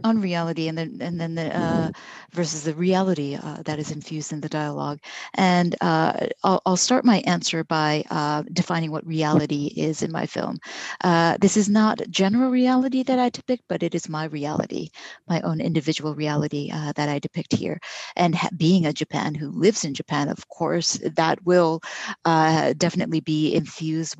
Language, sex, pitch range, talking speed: English, female, 155-200 Hz, 185 wpm